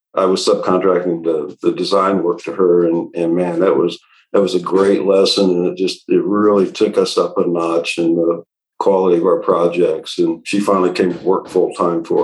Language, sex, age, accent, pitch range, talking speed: English, male, 50-69, American, 90-110 Hz, 215 wpm